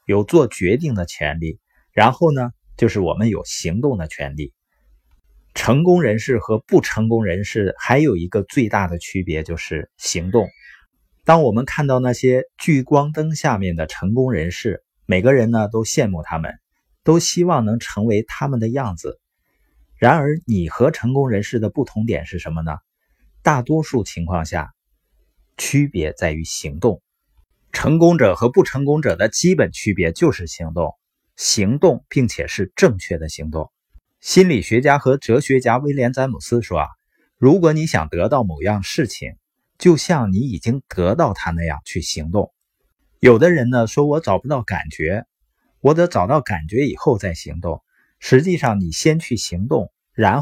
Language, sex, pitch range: Chinese, male, 90-140 Hz